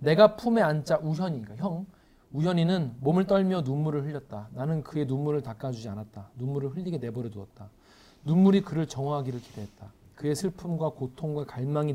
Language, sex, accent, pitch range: Korean, male, native, 125-195 Hz